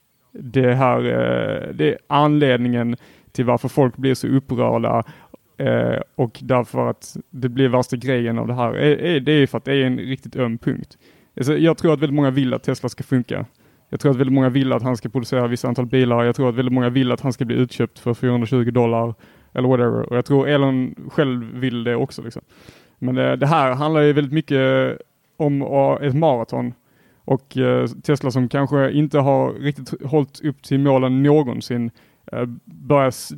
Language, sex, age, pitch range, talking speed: Swedish, male, 30-49, 125-140 Hz, 185 wpm